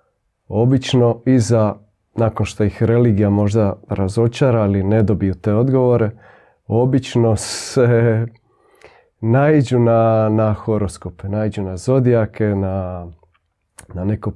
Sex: male